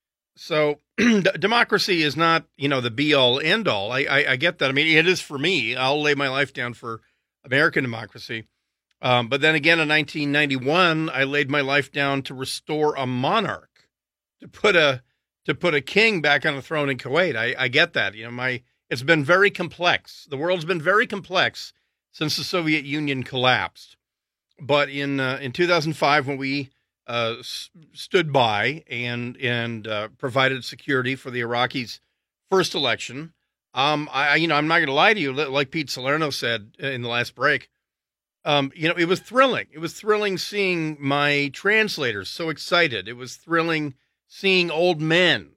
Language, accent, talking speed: English, American, 185 wpm